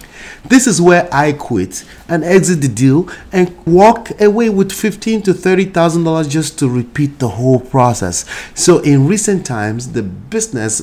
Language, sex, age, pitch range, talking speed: English, male, 30-49, 115-165 Hz, 155 wpm